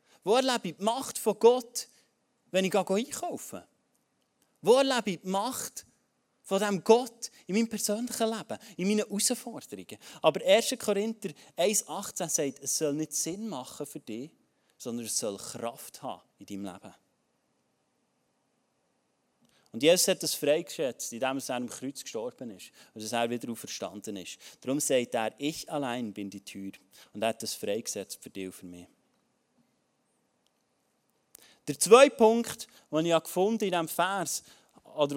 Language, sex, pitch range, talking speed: German, male, 140-225 Hz, 155 wpm